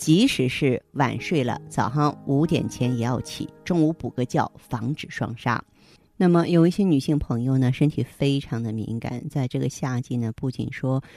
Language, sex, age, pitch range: Chinese, female, 30-49, 125-155 Hz